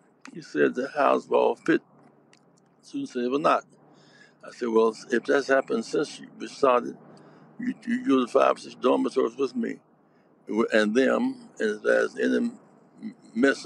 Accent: American